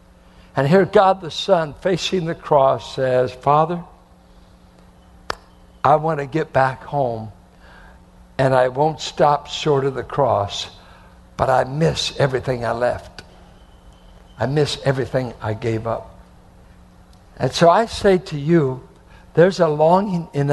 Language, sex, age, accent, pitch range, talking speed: English, male, 60-79, American, 130-170 Hz, 135 wpm